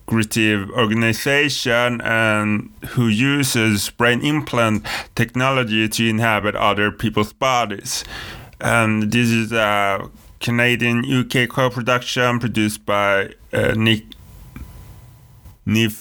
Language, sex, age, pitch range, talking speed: English, male, 30-49, 110-125 Hz, 90 wpm